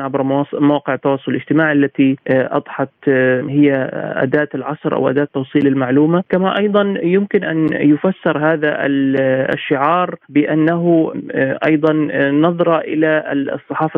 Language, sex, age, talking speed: Arabic, male, 30-49, 105 wpm